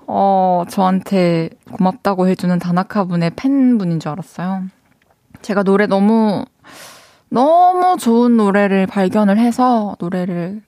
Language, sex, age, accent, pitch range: Korean, female, 20-39, native, 180-220 Hz